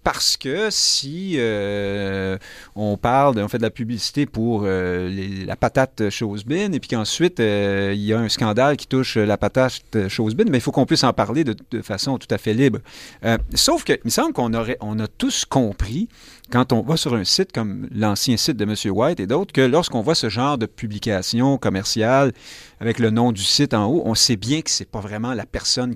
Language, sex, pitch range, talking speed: French, male, 110-140 Hz, 225 wpm